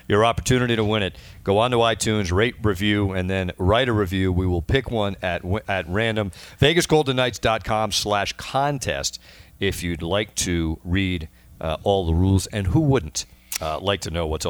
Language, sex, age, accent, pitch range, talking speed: English, male, 50-69, American, 85-120 Hz, 180 wpm